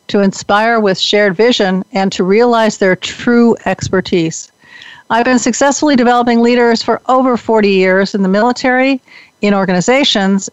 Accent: American